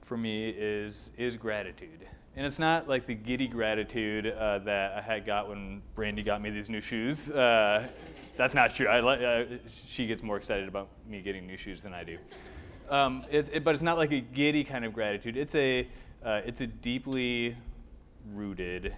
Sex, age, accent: male, 20-39, American